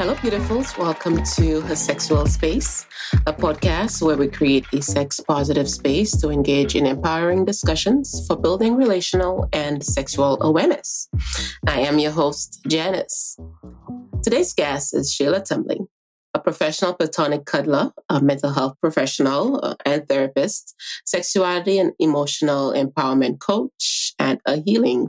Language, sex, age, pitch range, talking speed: English, female, 30-49, 135-165 Hz, 130 wpm